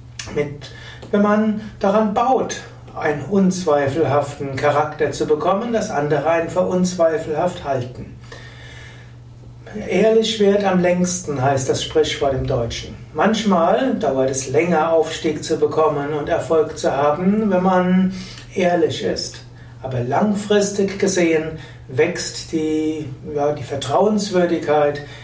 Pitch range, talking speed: 140-180 Hz, 110 wpm